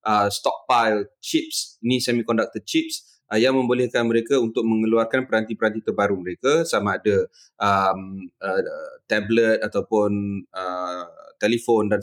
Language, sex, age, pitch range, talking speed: Malay, male, 20-39, 105-135 Hz, 120 wpm